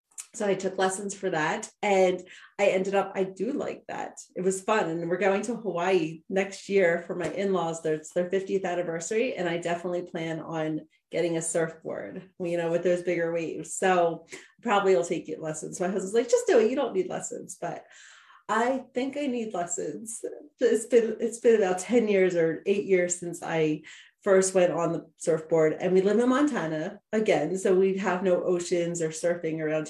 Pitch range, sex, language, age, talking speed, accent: 165-200 Hz, female, English, 30-49, 195 wpm, American